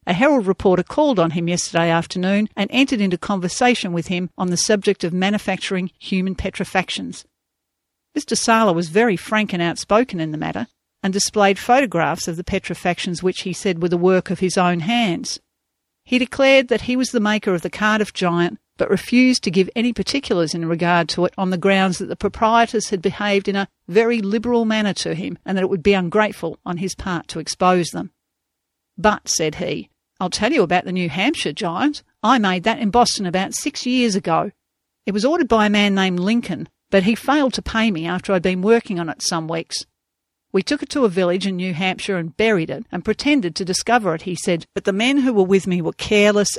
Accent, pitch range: Australian, 180-225 Hz